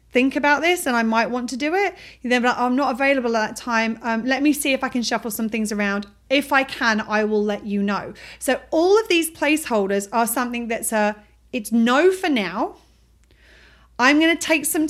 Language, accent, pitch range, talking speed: English, British, 215-270 Hz, 220 wpm